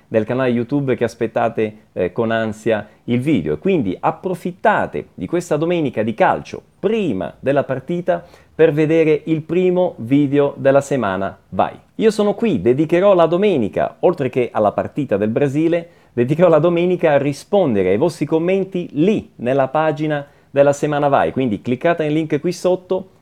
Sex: male